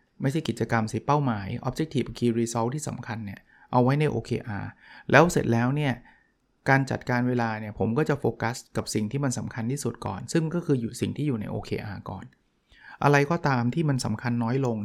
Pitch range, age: 115-140 Hz, 20-39